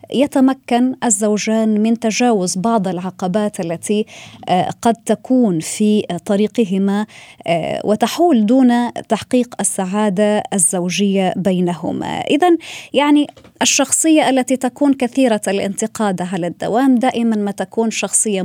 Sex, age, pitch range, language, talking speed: female, 20-39, 190-255 Hz, Arabic, 100 wpm